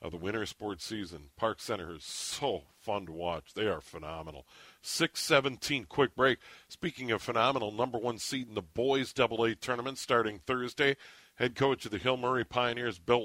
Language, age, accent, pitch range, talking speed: English, 50-69, American, 115-140 Hz, 180 wpm